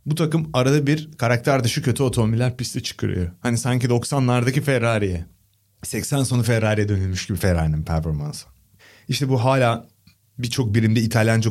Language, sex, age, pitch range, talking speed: Turkish, male, 30-49, 100-135 Hz, 140 wpm